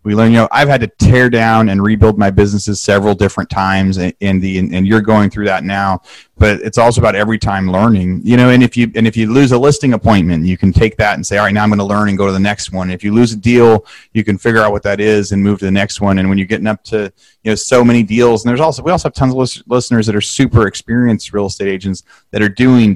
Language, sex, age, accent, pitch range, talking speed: English, male, 30-49, American, 100-120 Hz, 290 wpm